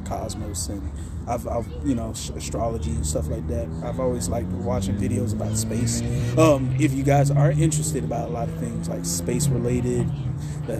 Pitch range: 100-130 Hz